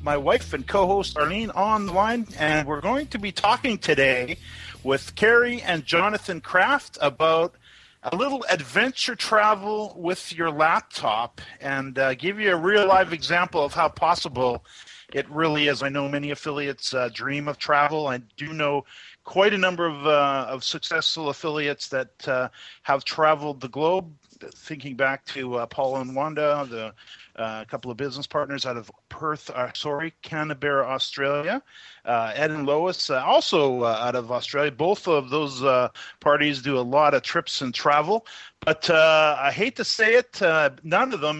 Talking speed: 170 wpm